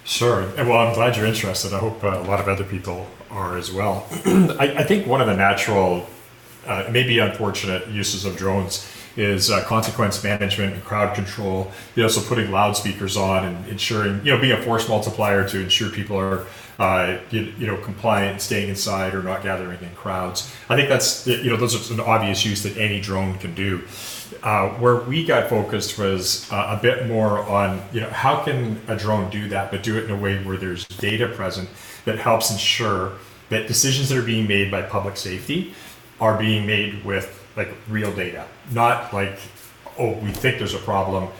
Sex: male